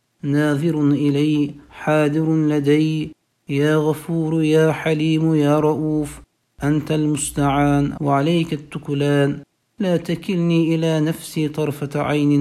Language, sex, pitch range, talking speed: Turkish, male, 145-160 Hz, 95 wpm